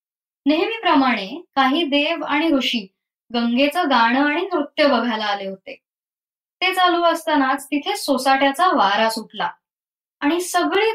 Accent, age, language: native, 20-39, Marathi